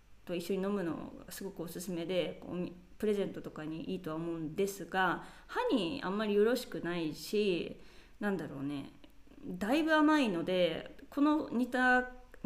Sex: female